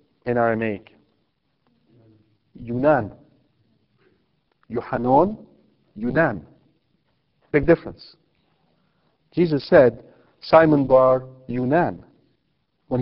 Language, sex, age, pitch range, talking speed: English, male, 50-69, 120-160 Hz, 60 wpm